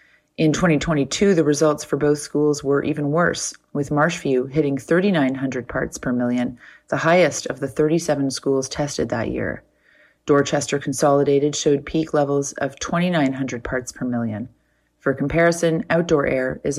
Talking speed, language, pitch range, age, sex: 145 wpm, English, 135-160 Hz, 30-49, female